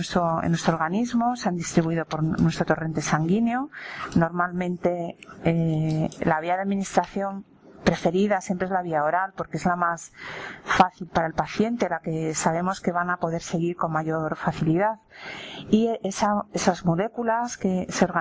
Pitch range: 170-220 Hz